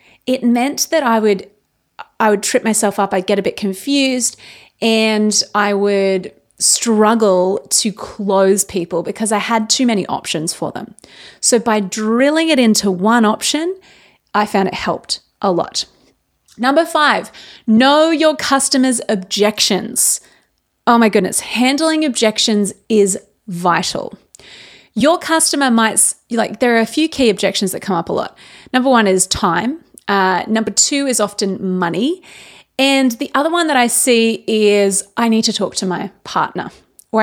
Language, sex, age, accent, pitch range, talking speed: English, female, 30-49, Australian, 200-260 Hz, 155 wpm